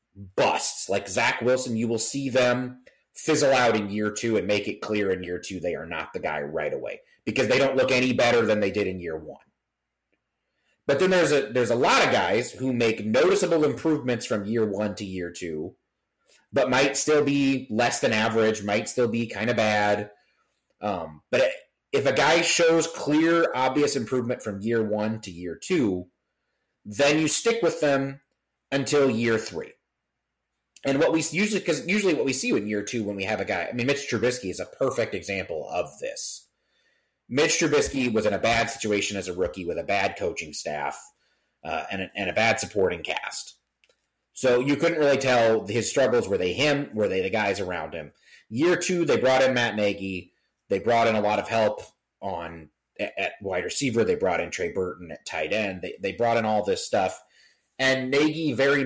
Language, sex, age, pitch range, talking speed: English, male, 30-49, 105-140 Hz, 200 wpm